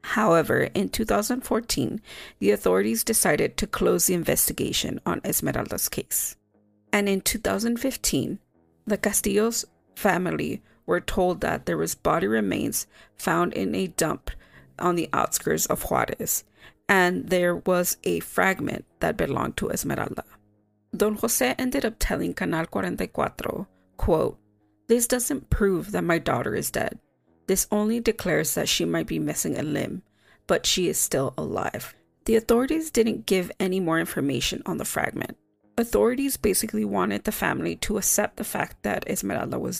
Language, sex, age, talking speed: English, female, 40-59, 145 wpm